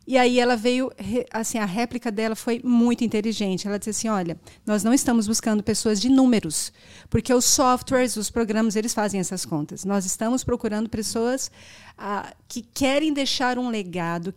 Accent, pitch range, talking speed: Brazilian, 200-245 Hz, 170 wpm